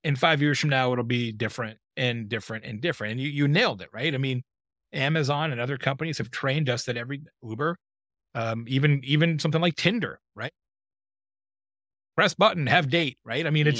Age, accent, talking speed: 30-49, American, 195 wpm